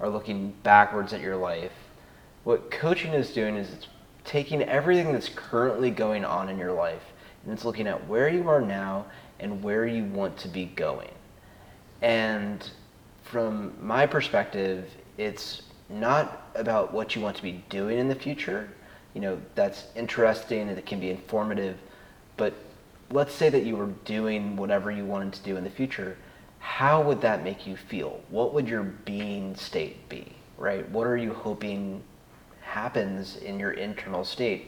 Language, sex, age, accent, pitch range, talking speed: English, male, 30-49, American, 95-120 Hz, 170 wpm